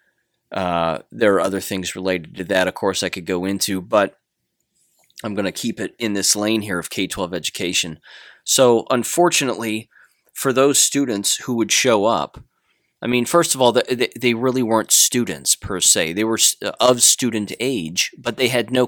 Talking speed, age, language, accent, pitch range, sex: 180 wpm, 30-49, English, American, 95-120 Hz, male